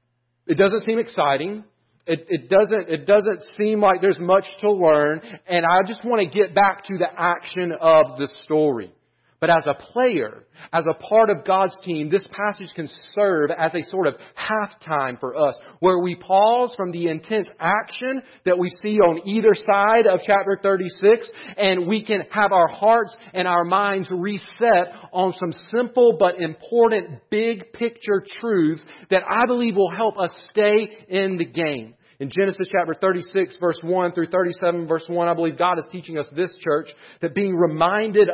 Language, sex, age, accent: English, male, 40-59, American